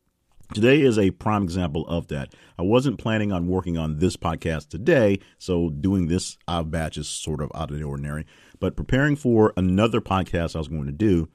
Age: 50-69